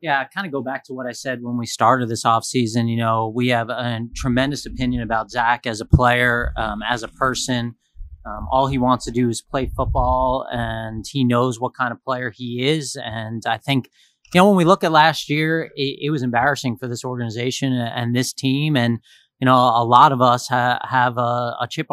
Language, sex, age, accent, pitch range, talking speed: English, male, 30-49, American, 120-135 Hz, 225 wpm